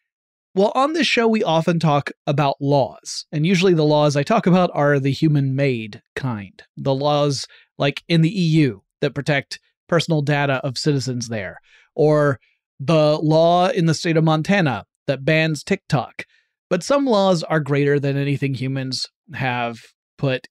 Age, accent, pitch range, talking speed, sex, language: 30-49, American, 130-165 Hz, 160 wpm, male, English